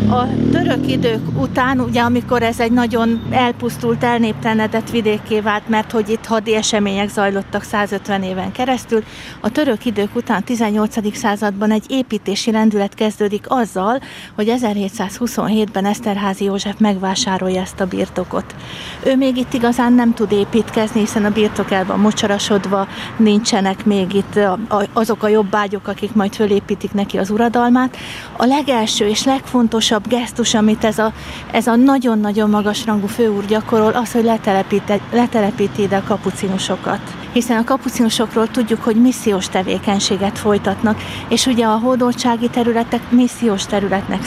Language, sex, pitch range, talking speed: Hungarian, female, 205-240 Hz, 140 wpm